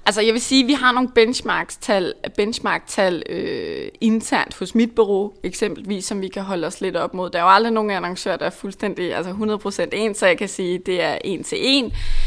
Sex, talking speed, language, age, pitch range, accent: female, 230 wpm, Danish, 20-39, 180-225 Hz, native